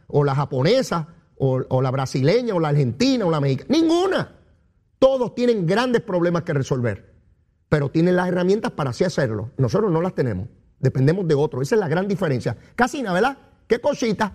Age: 40-59